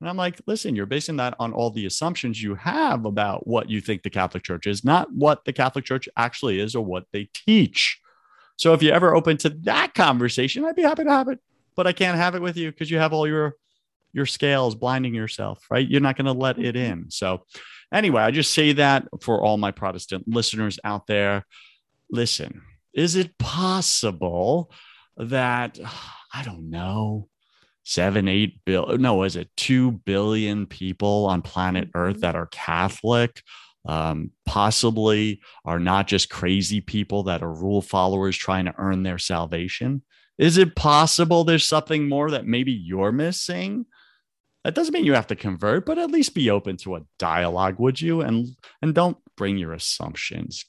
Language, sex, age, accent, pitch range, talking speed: English, male, 30-49, American, 95-155 Hz, 180 wpm